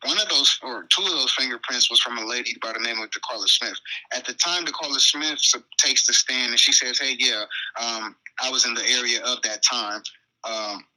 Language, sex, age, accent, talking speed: English, male, 20-39, American, 225 wpm